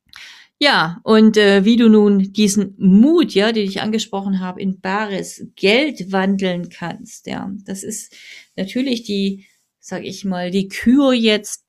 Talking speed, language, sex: 150 wpm, German, female